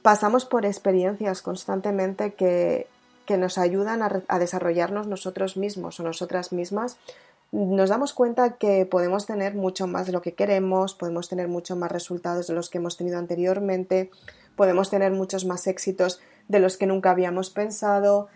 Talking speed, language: 165 wpm, Spanish